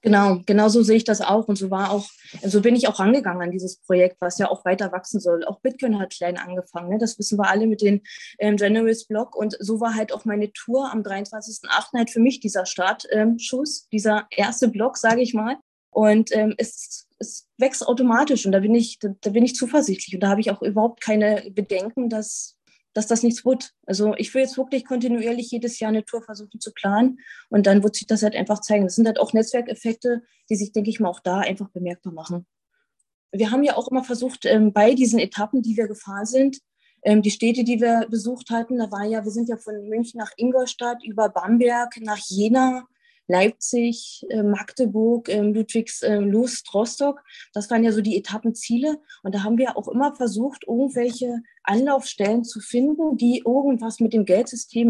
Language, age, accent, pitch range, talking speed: German, 20-39, German, 205-245 Hz, 200 wpm